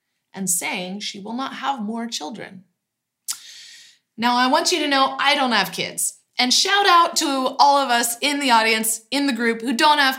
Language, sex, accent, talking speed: English, female, American, 200 wpm